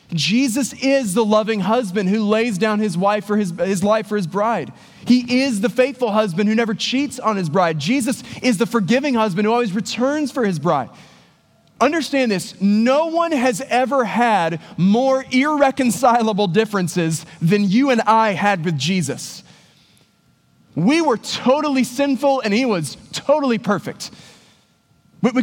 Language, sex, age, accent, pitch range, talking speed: English, male, 20-39, American, 185-250 Hz, 150 wpm